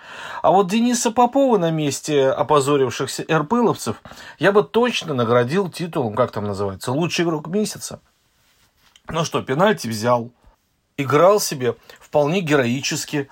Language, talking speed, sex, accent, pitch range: Russian, 120 wpm, male, native, 125-165 Hz